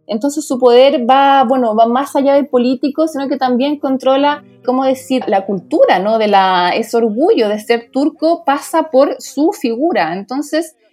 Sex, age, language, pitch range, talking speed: female, 20-39, Spanish, 205-265 Hz, 170 wpm